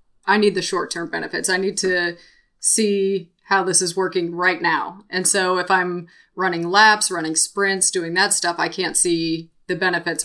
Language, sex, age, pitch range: English, female, 20-39, 170-190 Hz